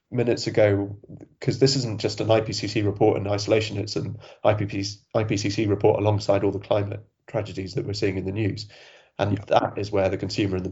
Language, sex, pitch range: English, male, 95-110 Hz